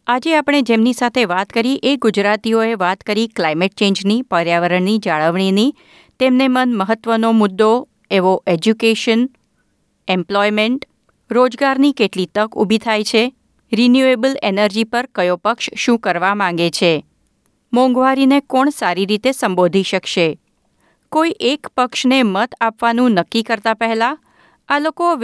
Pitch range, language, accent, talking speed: 195-265 Hz, Gujarati, native, 120 wpm